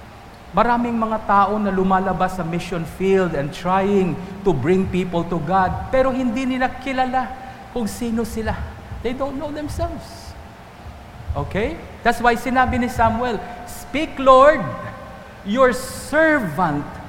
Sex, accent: male, Filipino